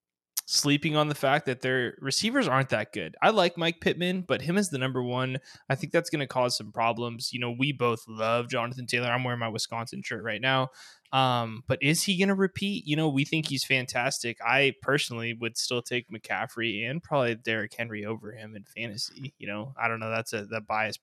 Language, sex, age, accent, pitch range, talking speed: English, male, 20-39, American, 115-140 Hz, 225 wpm